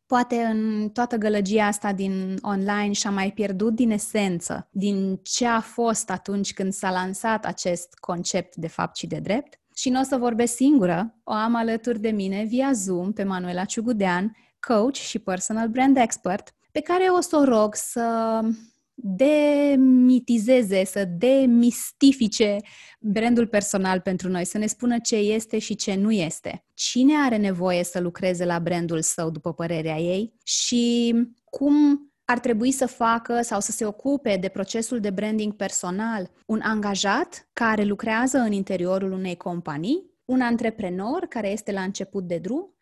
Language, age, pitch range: Romanian, 20-39, 190-235 Hz